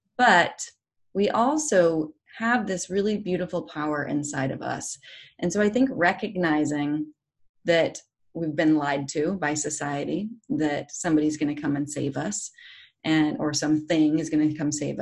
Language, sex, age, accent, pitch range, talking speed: English, female, 30-49, American, 145-175 Hz, 155 wpm